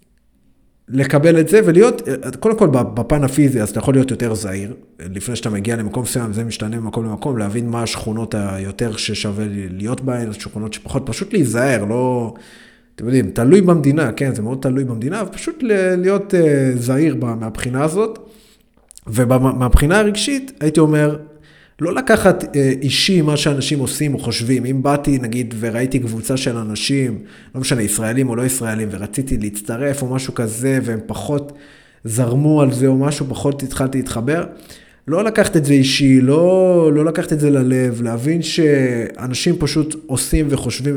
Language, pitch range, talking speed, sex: Hebrew, 115-145 Hz, 160 wpm, male